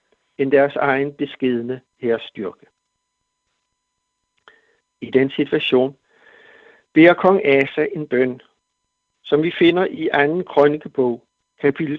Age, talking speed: 60-79, 105 wpm